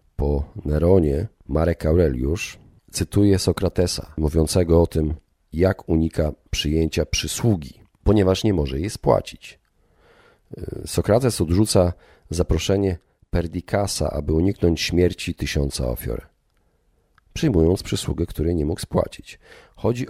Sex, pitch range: male, 80-100 Hz